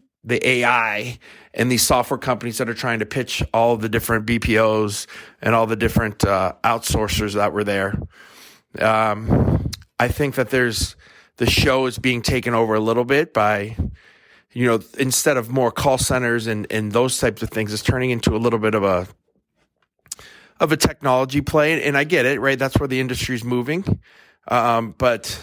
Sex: male